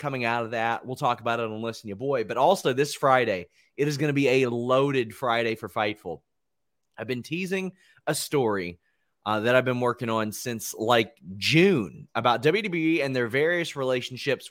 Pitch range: 110-155 Hz